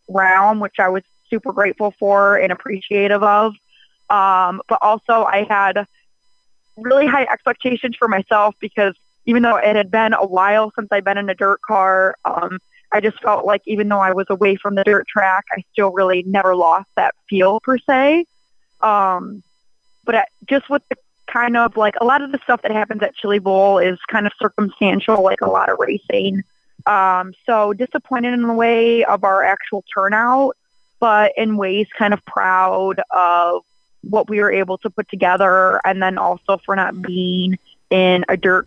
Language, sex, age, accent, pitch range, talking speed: English, female, 20-39, American, 190-220 Hz, 185 wpm